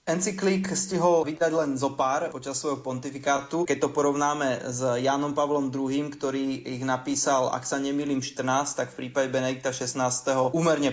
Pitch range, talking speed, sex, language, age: 130-150 Hz, 160 wpm, male, Slovak, 20-39